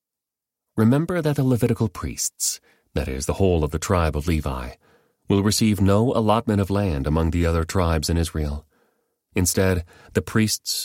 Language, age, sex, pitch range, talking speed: English, 30-49, male, 75-100 Hz, 160 wpm